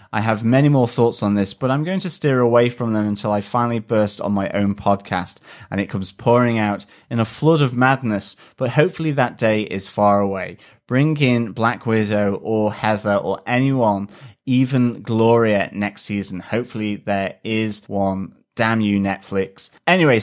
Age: 30-49